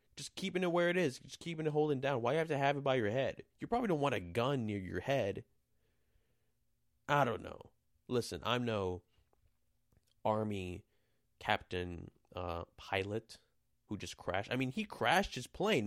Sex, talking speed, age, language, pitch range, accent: male, 185 wpm, 20-39, English, 95-135 Hz, American